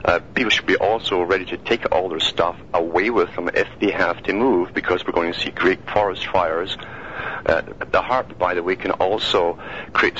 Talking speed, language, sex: 210 wpm, English, male